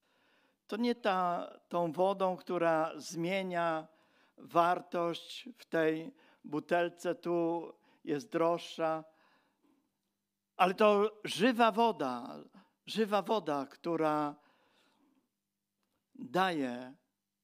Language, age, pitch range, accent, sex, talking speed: Polish, 50-69, 145-205 Hz, native, male, 75 wpm